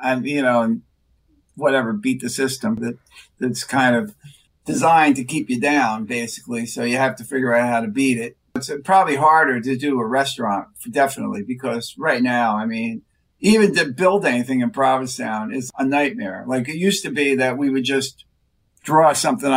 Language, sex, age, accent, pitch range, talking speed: English, male, 50-69, American, 125-170 Hz, 185 wpm